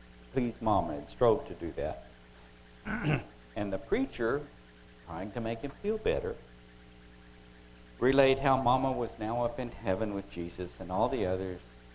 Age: 60-79